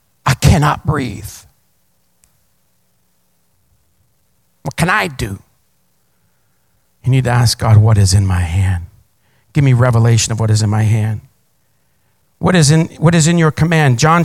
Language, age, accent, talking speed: English, 50-69, American, 140 wpm